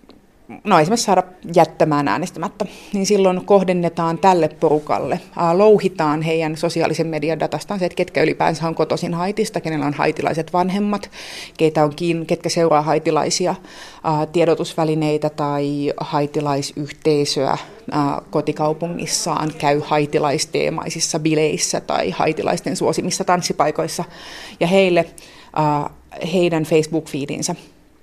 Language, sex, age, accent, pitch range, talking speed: Finnish, female, 30-49, native, 155-180 Hz, 90 wpm